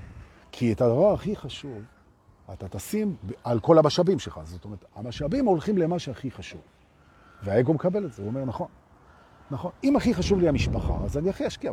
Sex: male